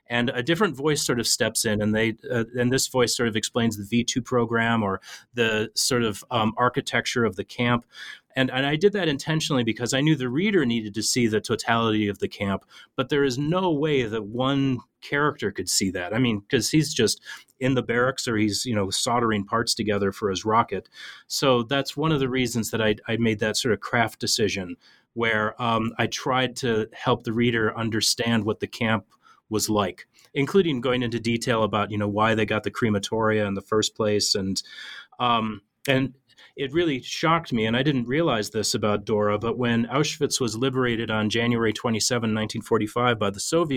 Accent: American